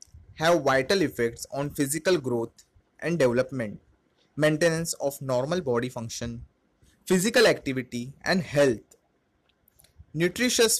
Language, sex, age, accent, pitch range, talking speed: Hindi, male, 20-39, native, 125-175 Hz, 100 wpm